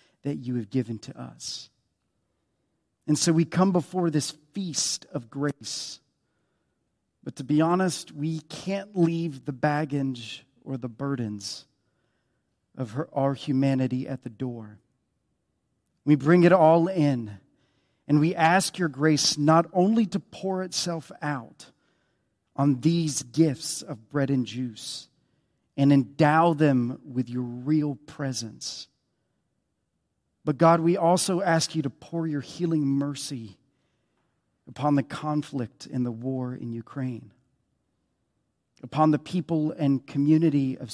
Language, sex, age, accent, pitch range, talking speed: English, male, 40-59, American, 125-155 Hz, 130 wpm